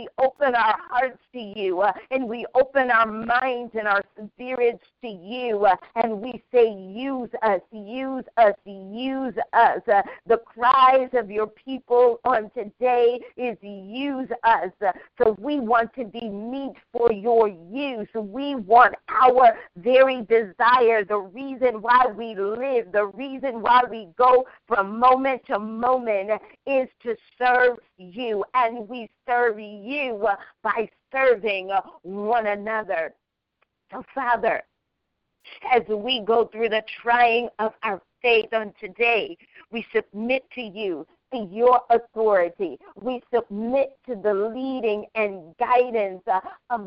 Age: 50-69